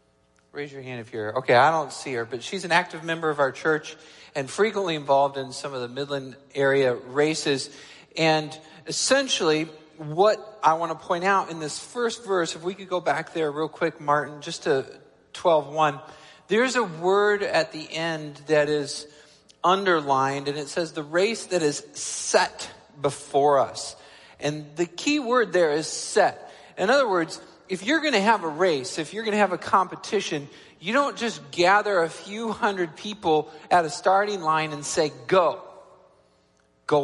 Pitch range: 155-200 Hz